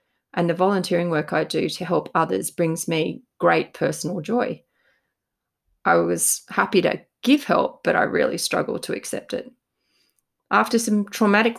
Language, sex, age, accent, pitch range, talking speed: English, female, 30-49, Australian, 165-195 Hz, 155 wpm